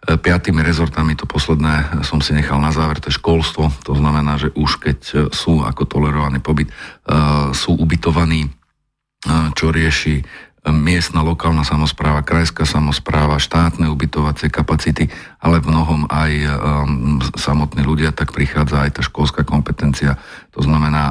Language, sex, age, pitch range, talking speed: Slovak, male, 50-69, 70-80 Hz, 135 wpm